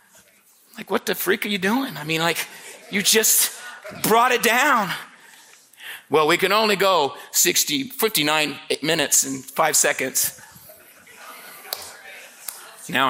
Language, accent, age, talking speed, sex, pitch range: English, American, 40-59, 125 wpm, male, 195-275 Hz